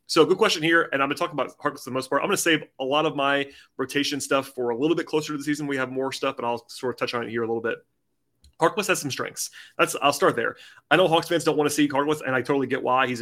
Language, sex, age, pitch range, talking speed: English, male, 30-49, 125-150 Hz, 320 wpm